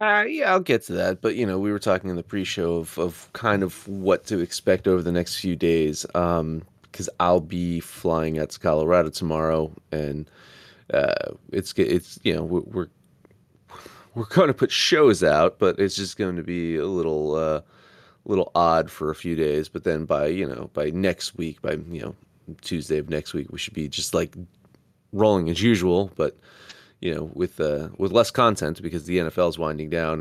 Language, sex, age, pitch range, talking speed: English, male, 30-49, 80-95 Hz, 205 wpm